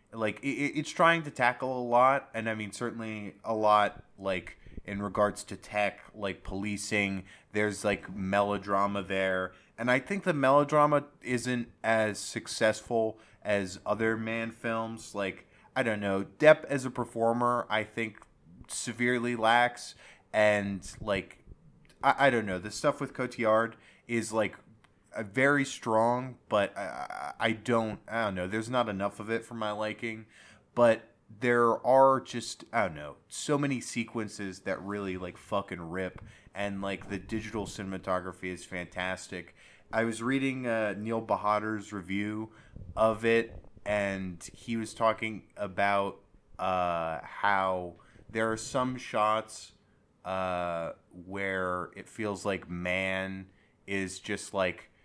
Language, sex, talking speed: English, male, 140 wpm